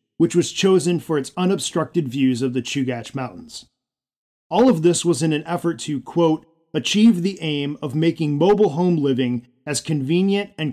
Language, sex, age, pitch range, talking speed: English, male, 40-59, 130-165 Hz, 175 wpm